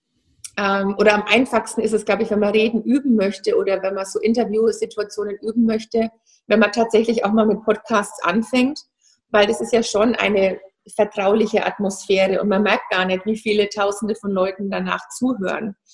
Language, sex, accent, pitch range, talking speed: German, female, German, 205-230 Hz, 175 wpm